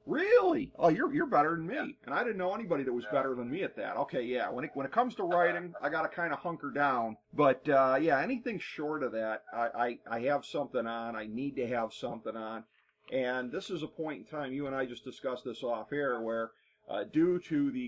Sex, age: male, 40-59